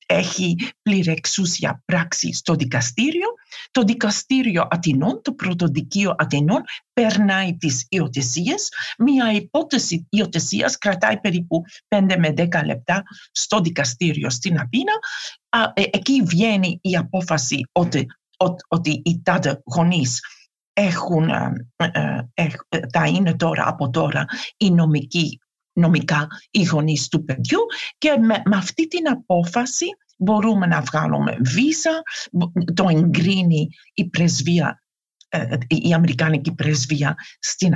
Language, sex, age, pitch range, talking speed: Greek, female, 50-69, 155-215 Hz, 105 wpm